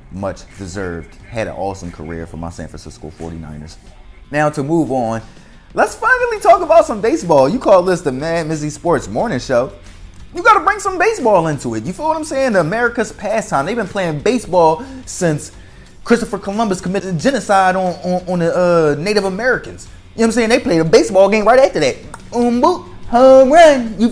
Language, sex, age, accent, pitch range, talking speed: English, male, 20-39, American, 140-220 Hz, 195 wpm